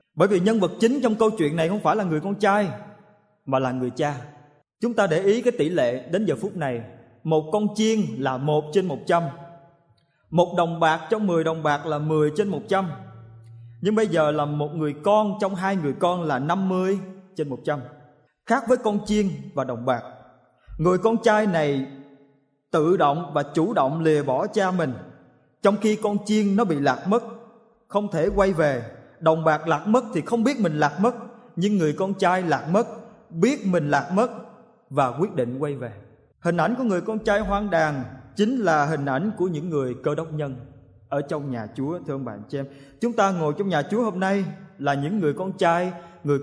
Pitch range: 145-210 Hz